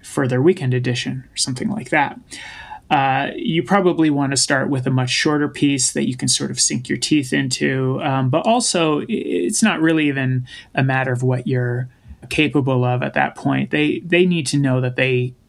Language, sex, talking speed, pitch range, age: English, male, 200 wpm, 125-150 Hz, 30-49